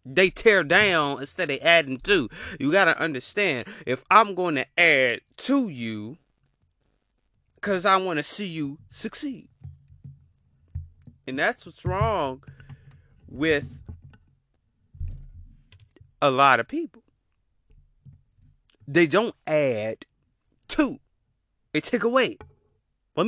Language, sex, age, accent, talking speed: English, male, 30-49, American, 110 wpm